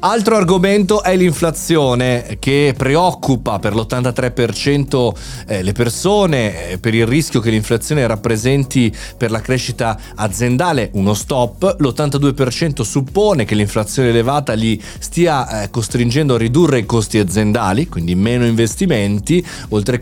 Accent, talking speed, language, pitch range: native, 115 wpm, Italian, 110-155 Hz